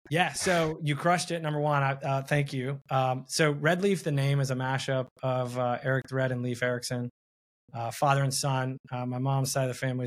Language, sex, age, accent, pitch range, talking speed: English, male, 20-39, American, 120-140 Hz, 215 wpm